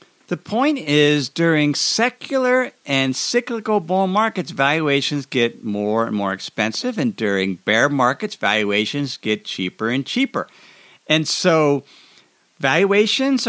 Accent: American